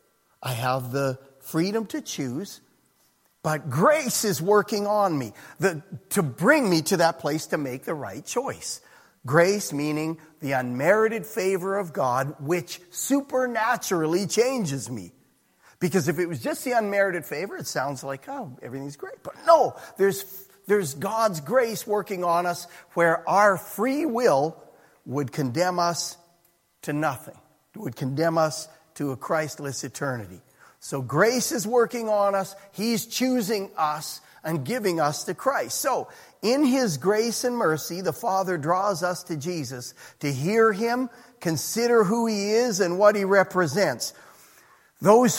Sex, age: male, 40-59